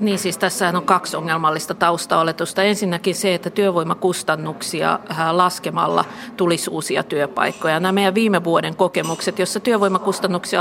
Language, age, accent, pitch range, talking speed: Finnish, 50-69, native, 175-215 Hz, 120 wpm